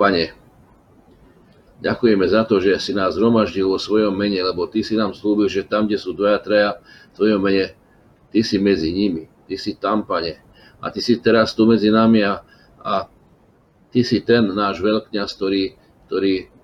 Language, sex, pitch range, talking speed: Slovak, male, 100-115 Hz, 175 wpm